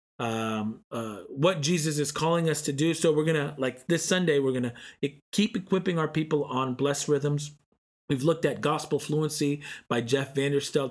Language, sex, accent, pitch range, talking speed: English, male, American, 125-155 Hz, 175 wpm